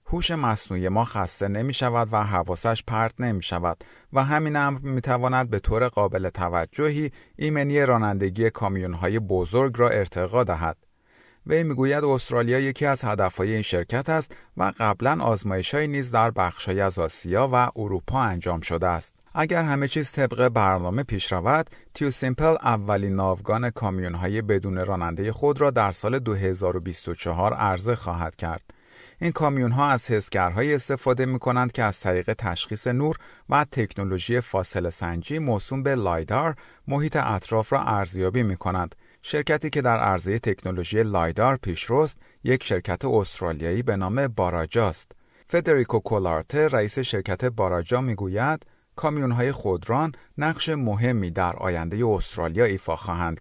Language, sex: Persian, male